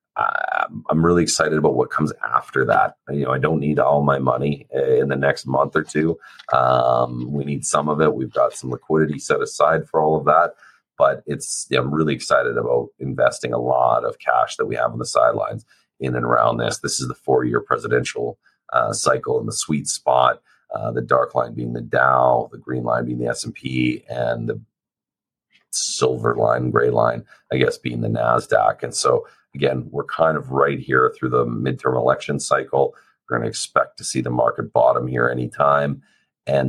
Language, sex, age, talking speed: English, male, 30-49, 200 wpm